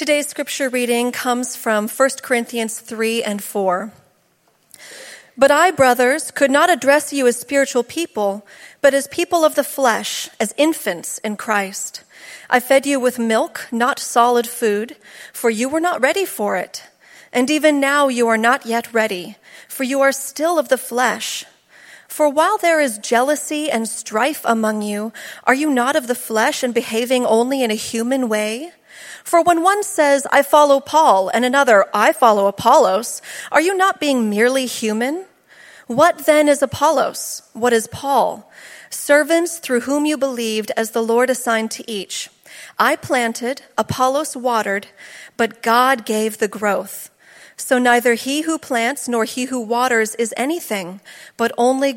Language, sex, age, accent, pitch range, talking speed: English, female, 40-59, American, 225-280 Hz, 160 wpm